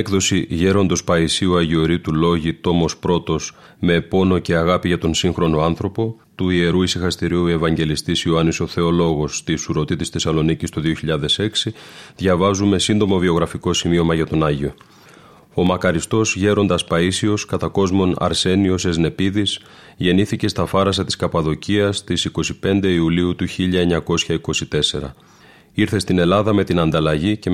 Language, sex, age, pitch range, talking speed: Greek, male, 30-49, 85-100 Hz, 135 wpm